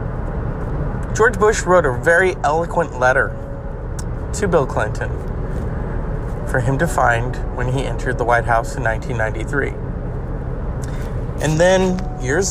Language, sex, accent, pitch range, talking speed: English, male, American, 130-165 Hz, 120 wpm